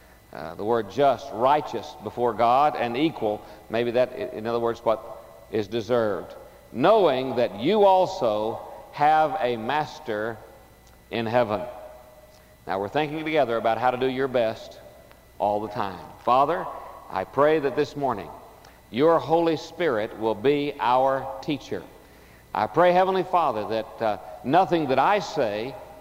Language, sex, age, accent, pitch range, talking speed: English, male, 50-69, American, 115-155 Hz, 145 wpm